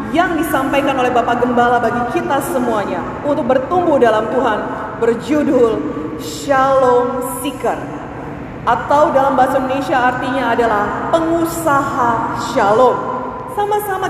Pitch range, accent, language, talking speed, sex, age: 255-320 Hz, Indonesian, English, 100 wpm, female, 30-49